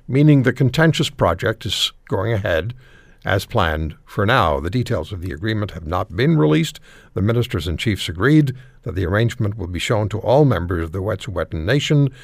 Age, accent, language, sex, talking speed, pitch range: 60-79, American, English, male, 185 wpm, 85-125 Hz